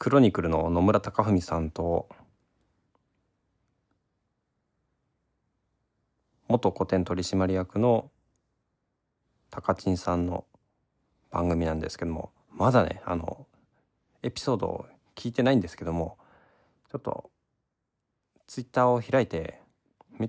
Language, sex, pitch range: Japanese, male, 85-120 Hz